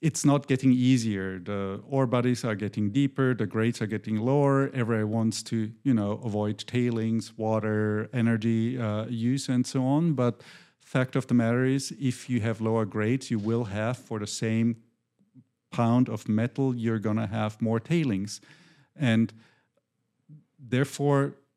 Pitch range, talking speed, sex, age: 110-140 Hz, 160 wpm, male, 50-69